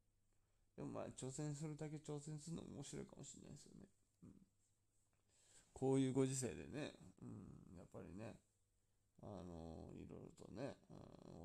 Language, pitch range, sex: Japanese, 95-130 Hz, male